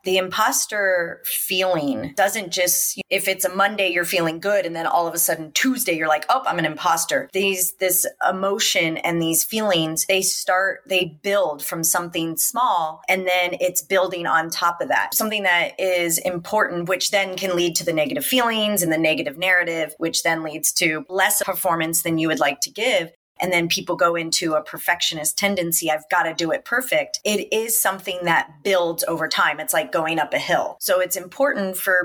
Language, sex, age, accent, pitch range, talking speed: English, female, 30-49, American, 170-200 Hz, 195 wpm